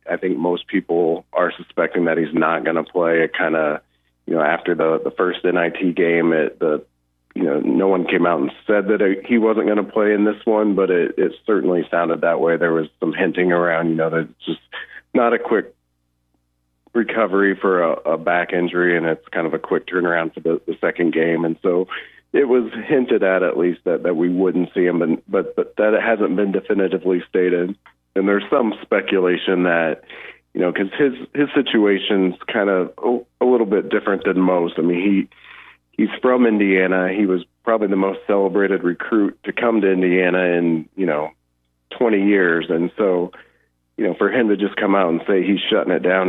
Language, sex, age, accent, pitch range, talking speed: English, male, 40-59, American, 85-105 Hz, 205 wpm